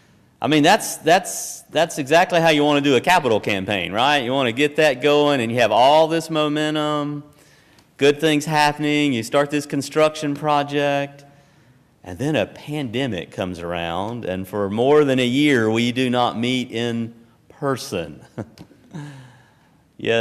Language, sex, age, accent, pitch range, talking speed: English, male, 40-59, American, 100-145 Hz, 160 wpm